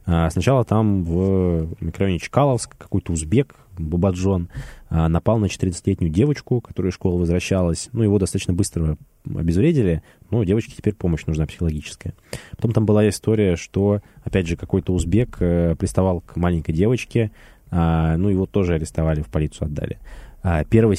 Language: Russian